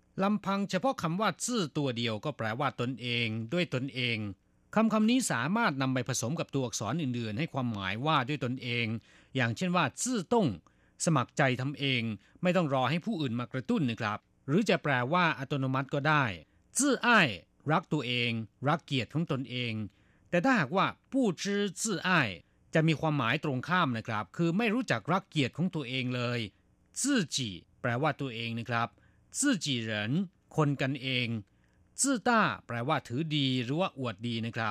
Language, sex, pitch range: Thai, male, 115-170 Hz